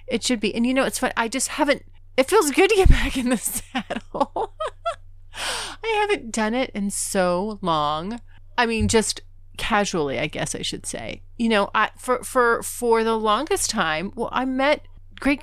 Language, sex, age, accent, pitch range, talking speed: English, female, 30-49, American, 150-235 Hz, 190 wpm